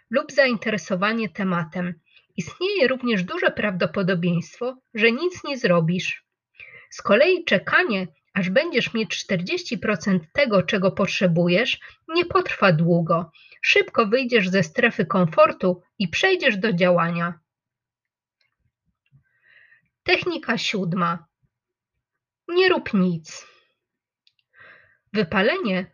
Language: Polish